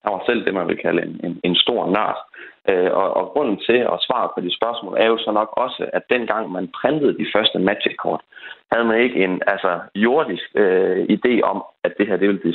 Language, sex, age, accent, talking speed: Danish, male, 30-49, native, 235 wpm